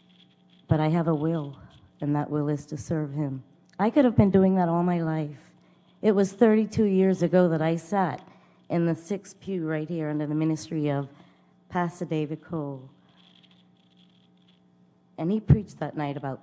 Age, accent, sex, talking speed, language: 40-59, American, female, 175 wpm, English